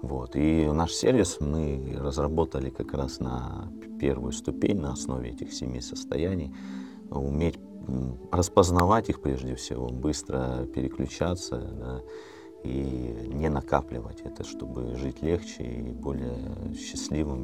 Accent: native